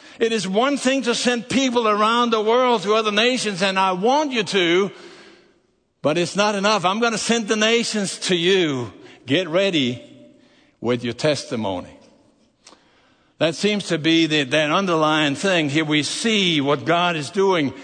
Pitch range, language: 135-215 Hz, English